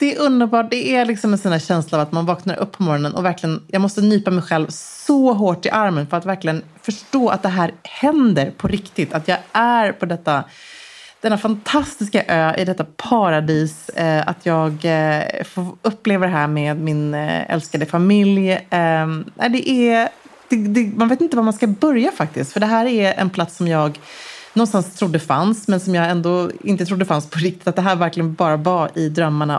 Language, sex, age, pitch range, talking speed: English, female, 30-49, 160-220 Hz, 180 wpm